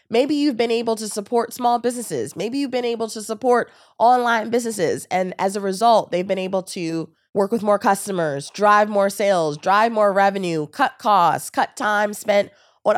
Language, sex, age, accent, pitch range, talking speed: English, female, 20-39, American, 190-245 Hz, 185 wpm